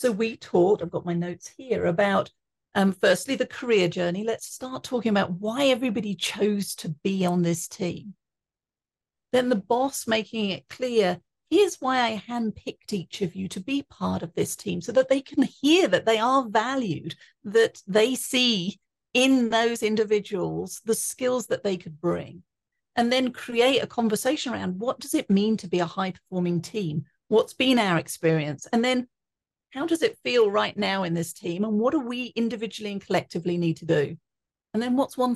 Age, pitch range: 40-59, 180-245 Hz